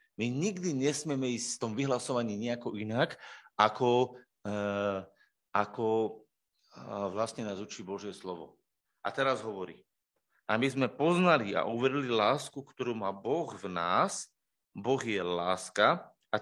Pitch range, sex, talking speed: 110-130 Hz, male, 135 wpm